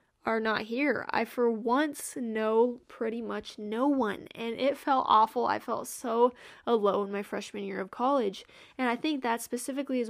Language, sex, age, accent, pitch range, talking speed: English, female, 10-29, American, 210-240 Hz, 180 wpm